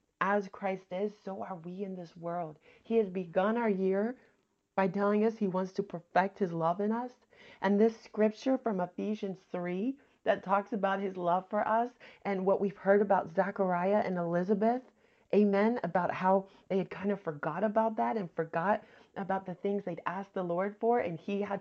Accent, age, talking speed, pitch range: American, 30-49, 190 wpm, 180-220 Hz